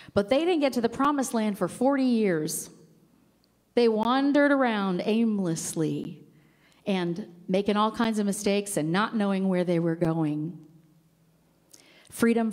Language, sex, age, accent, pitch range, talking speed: English, female, 40-59, American, 180-230 Hz, 140 wpm